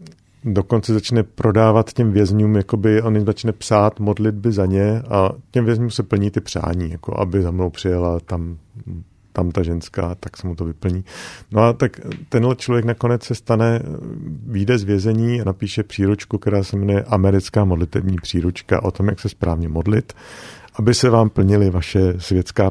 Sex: male